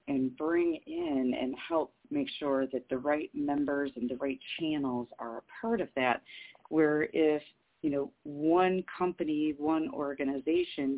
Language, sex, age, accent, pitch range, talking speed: English, female, 40-59, American, 130-160 Hz, 155 wpm